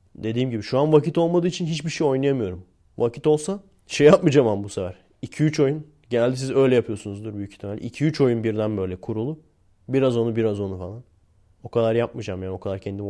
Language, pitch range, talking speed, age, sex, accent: Turkish, 105-150 Hz, 190 wpm, 30-49, male, native